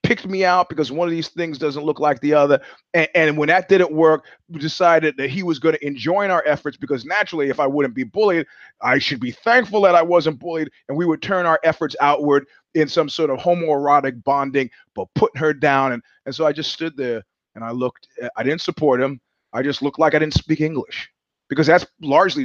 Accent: American